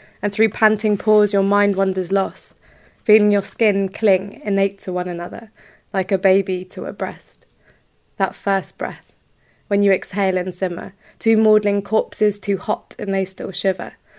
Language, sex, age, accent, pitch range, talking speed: English, female, 20-39, British, 195-220 Hz, 165 wpm